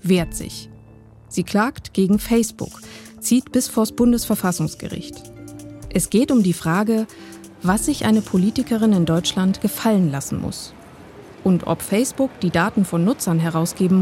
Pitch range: 170-220 Hz